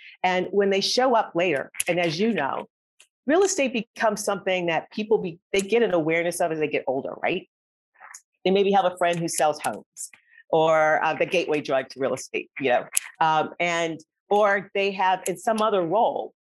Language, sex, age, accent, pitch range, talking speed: English, female, 40-59, American, 155-215 Hz, 195 wpm